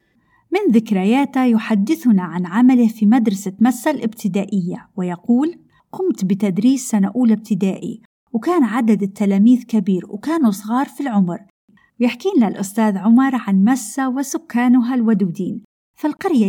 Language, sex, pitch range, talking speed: Arabic, female, 200-260 Hz, 115 wpm